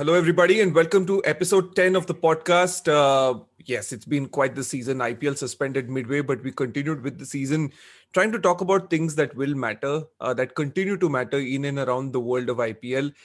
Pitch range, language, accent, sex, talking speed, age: 135-165 Hz, English, Indian, male, 210 wpm, 30-49